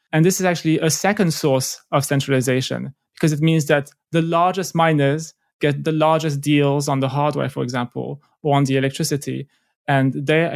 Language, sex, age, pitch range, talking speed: English, male, 20-39, 140-160 Hz, 175 wpm